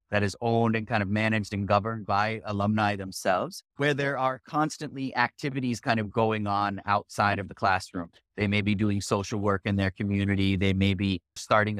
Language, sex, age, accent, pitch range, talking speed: English, male, 30-49, American, 105-120 Hz, 195 wpm